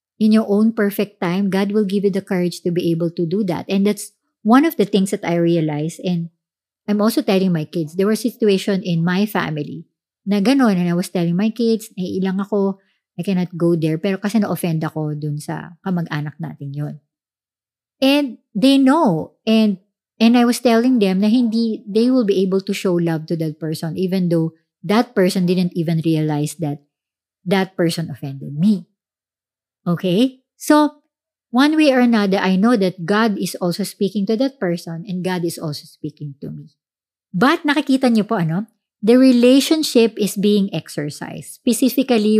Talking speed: 185 wpm